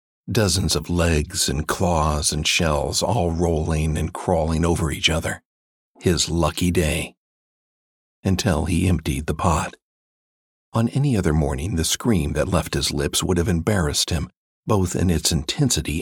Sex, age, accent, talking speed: male, 50-69, American, 150 wpm